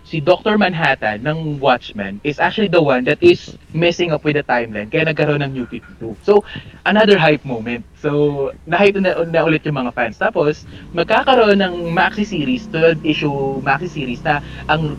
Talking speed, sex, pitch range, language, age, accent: 175 wpm, male, 120-155 Hz, Filipino, 20-39, native